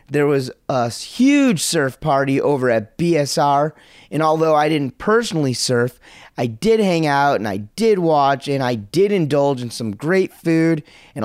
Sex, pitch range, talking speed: male, 130-170 Hz, 170 wpm